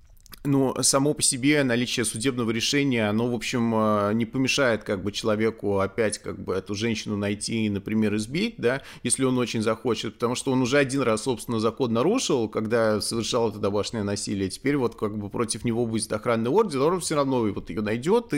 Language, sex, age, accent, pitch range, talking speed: Russian, male, 30-49, native, 110-140 Hz, 195 wpm